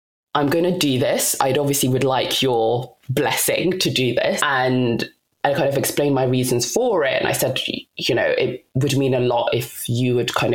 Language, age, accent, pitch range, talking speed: English, 20-39, British, 130-160 Hz, 210 wpm